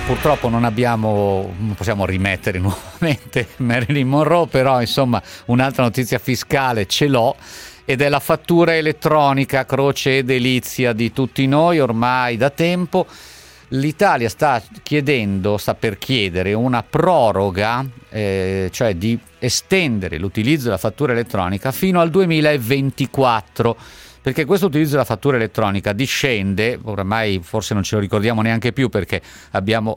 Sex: male